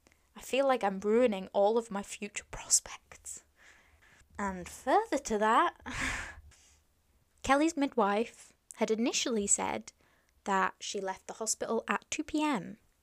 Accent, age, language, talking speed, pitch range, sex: British, 10-29, English, 120 wpm, 195-265 Hz, female